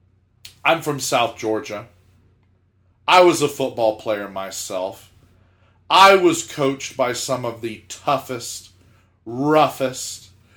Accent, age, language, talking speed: American, 40-59, English, 110 wpm